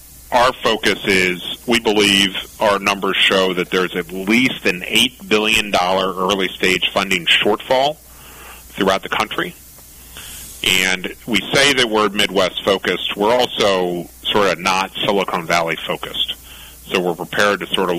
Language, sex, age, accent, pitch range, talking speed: English, male, 40-59, American, 80-100 Hz, 135 wpm